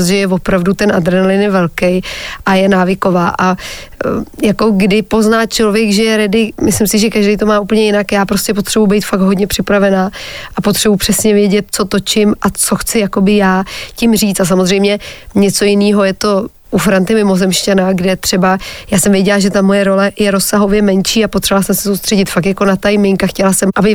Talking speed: 195 wpm